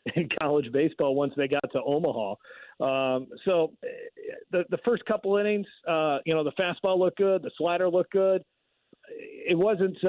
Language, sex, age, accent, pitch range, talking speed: English, male, 50-69, American, 145-185 Hz, 170 wpm